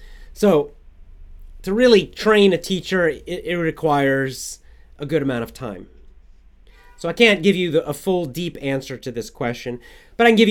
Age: 30-49